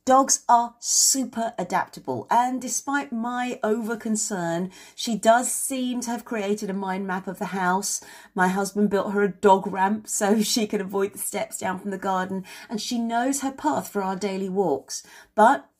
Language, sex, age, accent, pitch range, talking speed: English, female, 40-59, British, 170-225 Hz, 180 wpm